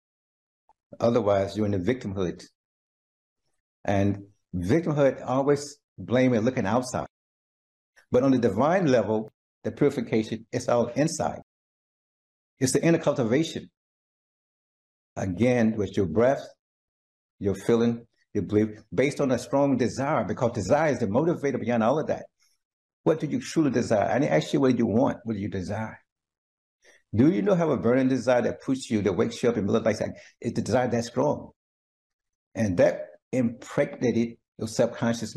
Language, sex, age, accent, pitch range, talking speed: English, male, 60-79, American, 100-130 Hz, 155 wpm